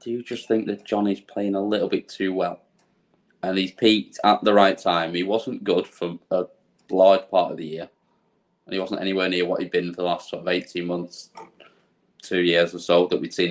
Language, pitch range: English, 90-105 Hz